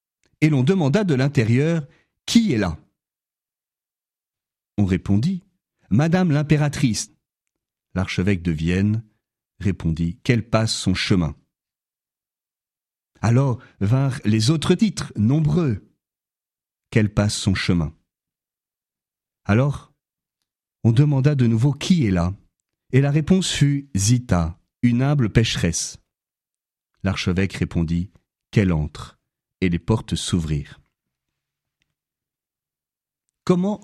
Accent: French